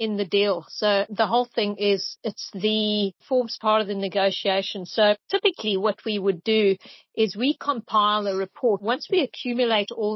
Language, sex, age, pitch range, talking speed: English, female, 40-59, 200-230 Hz, 175 wpm